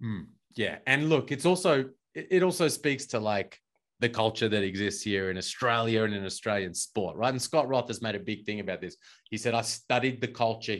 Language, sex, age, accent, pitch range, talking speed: English, male, 30-49, Australian, 105-135 Hz, 215 wpm